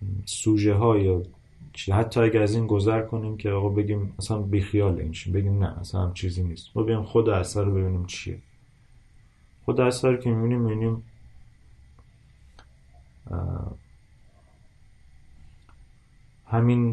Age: 30-49